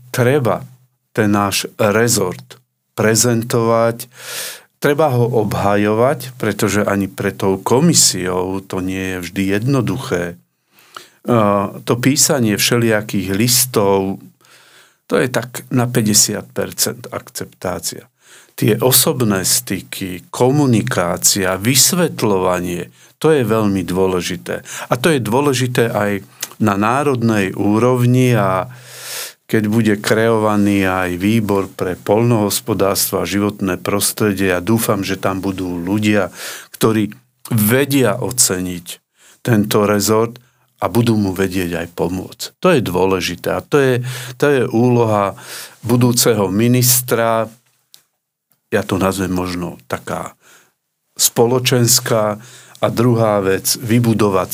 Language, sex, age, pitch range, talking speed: Slovak, male, 50-69, 95-120 Hz, 105 wpm